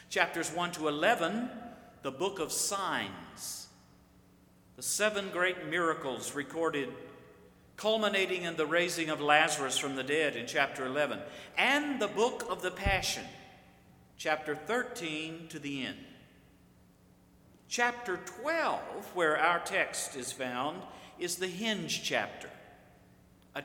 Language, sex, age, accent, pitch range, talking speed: English, male, 50-69, American, 150-205 Hz, 120 wpm